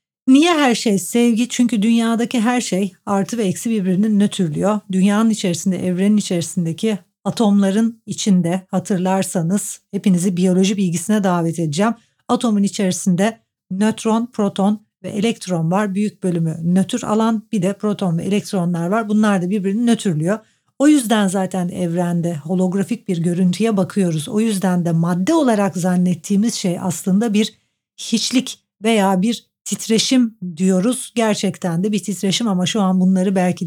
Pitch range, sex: 185-220 Hz, female